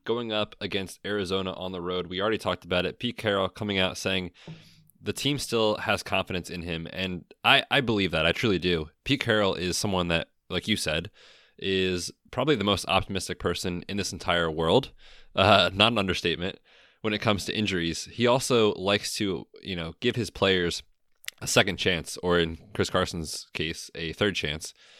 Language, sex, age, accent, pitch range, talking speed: English, male, 20-39, American, 85-105 Hz, 190 wpm